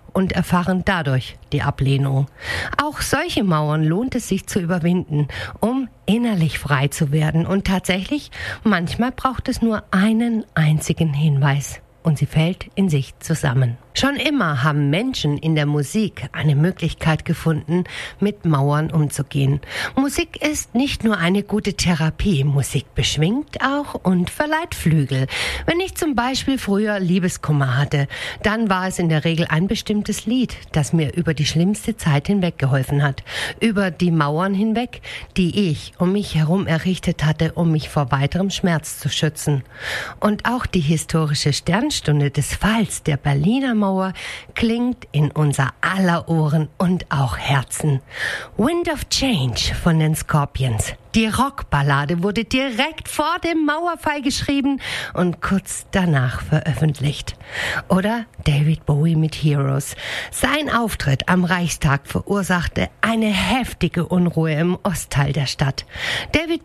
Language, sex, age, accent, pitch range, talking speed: German, female, 50-69, German, 145-210 Hz, 140 wpm